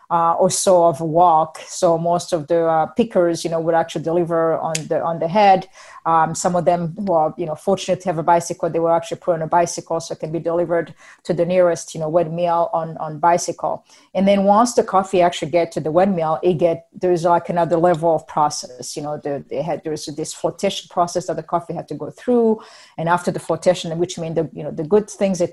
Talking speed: 250 wpm